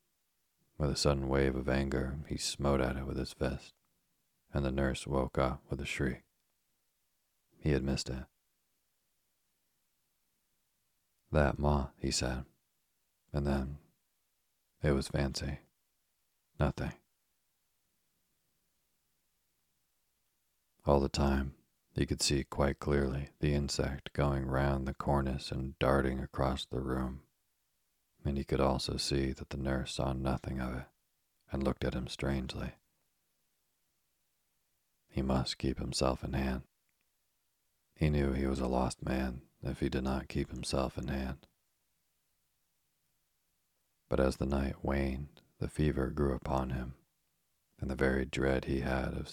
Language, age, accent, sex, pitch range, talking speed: English, 40-59, American, male, 65-70 Hz, 135 wpm